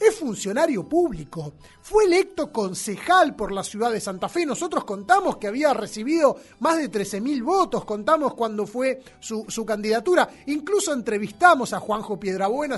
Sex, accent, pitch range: male, Argentinian, 205-290 Hz